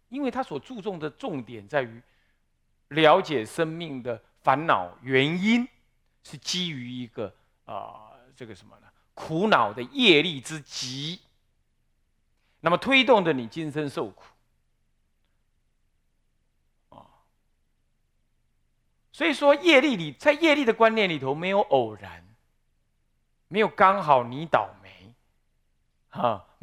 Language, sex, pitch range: Chinese, male, 120-195 Hz